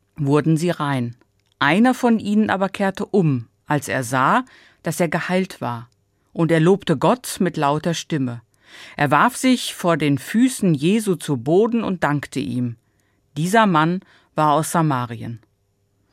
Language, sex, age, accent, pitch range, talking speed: German, female, 50-69, German, 135-195 Hz, 150 wpm